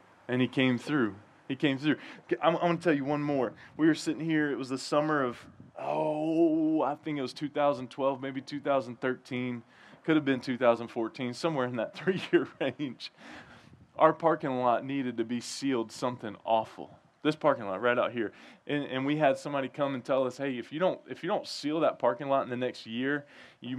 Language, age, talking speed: English, 20-39, 205 wpm